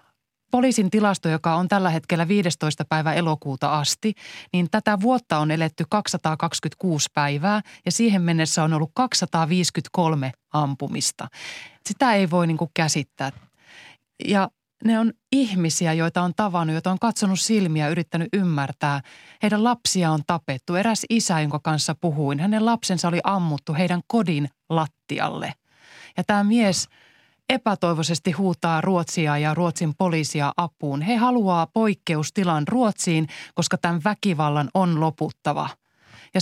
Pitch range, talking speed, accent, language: 155-205 Hz, 130 wpm, native, Finnish